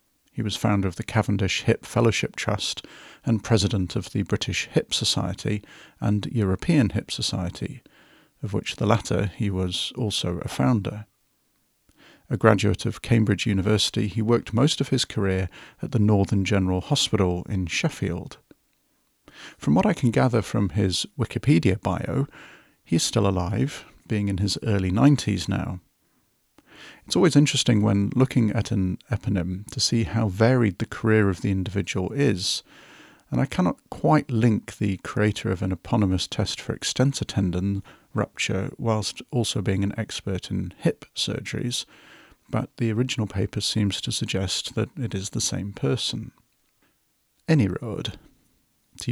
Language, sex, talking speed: English, male, 150 wpm